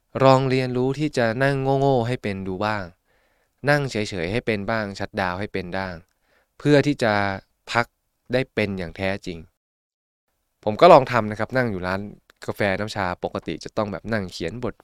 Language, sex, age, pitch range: Thai, male, 20-39, 100-120 Hz